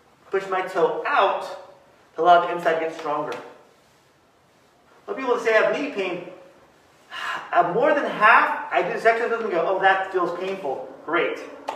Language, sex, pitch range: English, male, 165-210 Hz